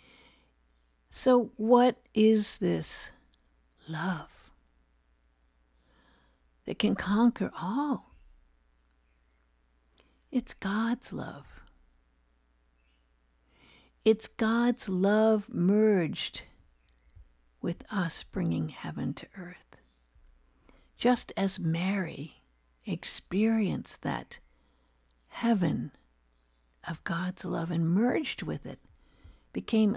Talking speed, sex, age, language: 70 wpm, female, 60-79, English